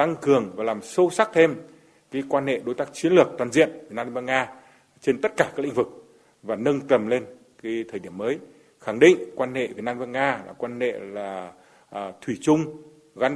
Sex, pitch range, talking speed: male, 125-155 Hz, 200 wpm